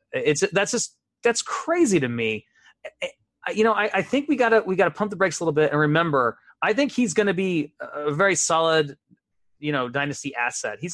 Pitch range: 135-175 Hz